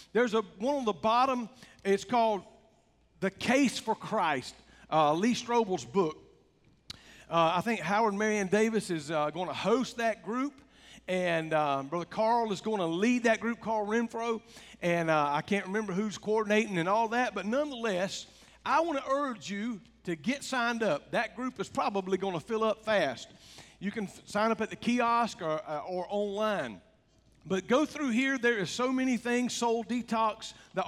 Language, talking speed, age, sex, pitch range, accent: English, 185 wpm, 50-69, male, 195-235 Hz, American